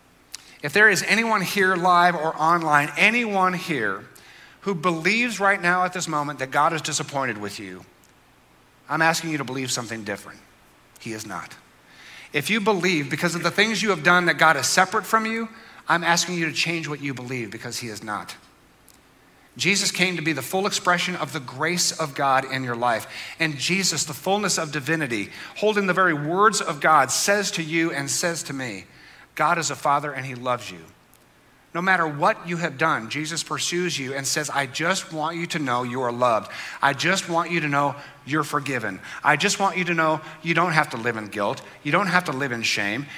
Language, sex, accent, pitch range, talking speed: English, male, American, 135-175 Hz, 210 wpm